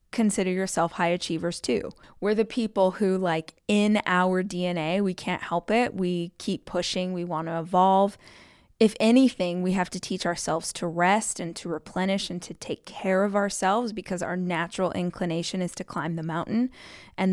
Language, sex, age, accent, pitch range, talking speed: English, female, 20-39, American, 175-205 Hz, 175 wpm